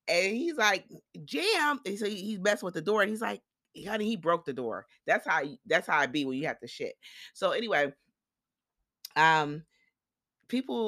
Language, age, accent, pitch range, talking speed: English, 30-49, American, 130-190 Hz, 195 wpm